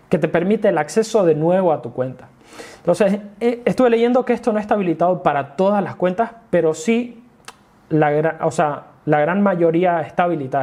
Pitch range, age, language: 155-205 Hz, 20-39, Spanish